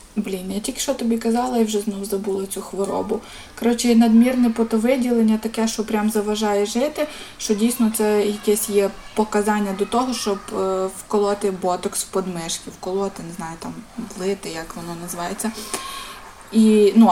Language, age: Ukrainian, 20-39